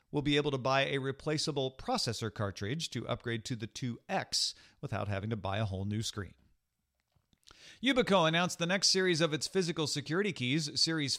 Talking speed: 175 wpm